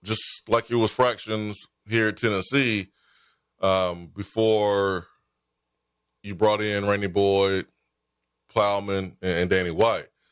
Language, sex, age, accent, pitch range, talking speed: English, male, 20-39, American, 85-110 Hz, 110 wpm